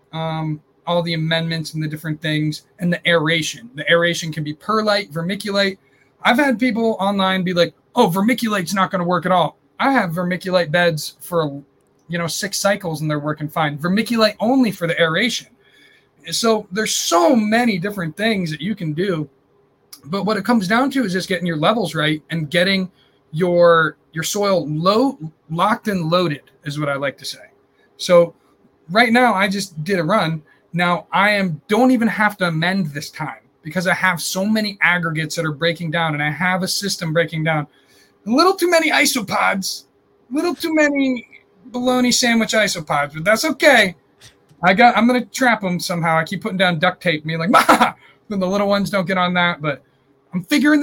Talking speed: 190 wpm